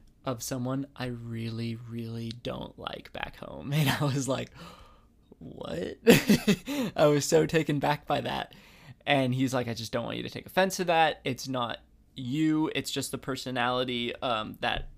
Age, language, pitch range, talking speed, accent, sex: 20-39, English, 120-140 Hz, 170 wpm, American, male